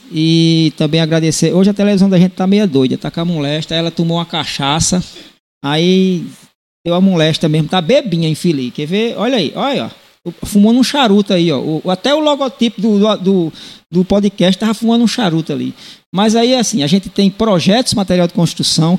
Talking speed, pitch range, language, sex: 185 wpm, 155-210 Hz, Portuguese, male